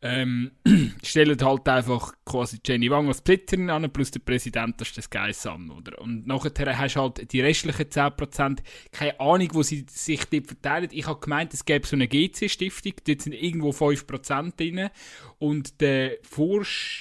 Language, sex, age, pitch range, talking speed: German, male, 20-39, 130-155 Hz, 175 wpm